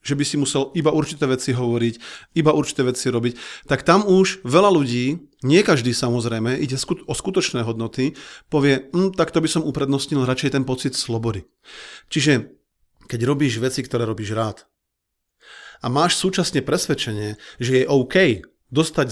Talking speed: 155 wpm